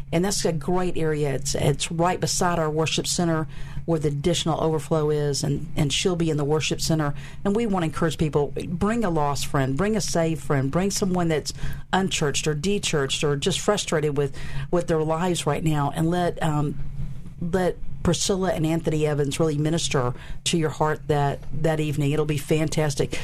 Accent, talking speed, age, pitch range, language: American, 190 wpm, 50-69, 145-170 Hz, English